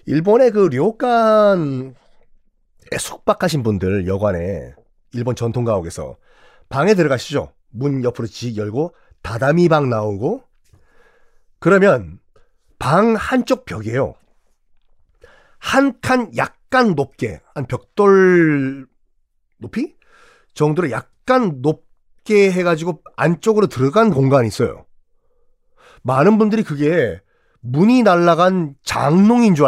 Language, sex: Korean, male